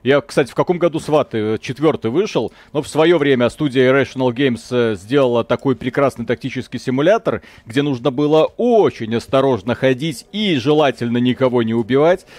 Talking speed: 150 wpm